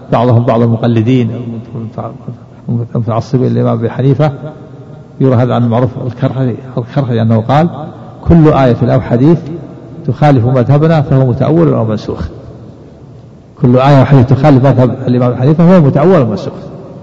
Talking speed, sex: 130 wpm, male